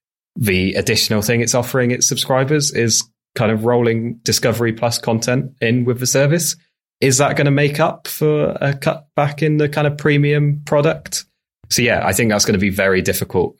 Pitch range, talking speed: 85-120 Hz, 195 wpm